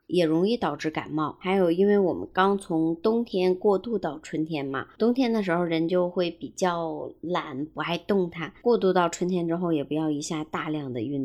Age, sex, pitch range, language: 20-39, male, 155-195 Hz, Chinese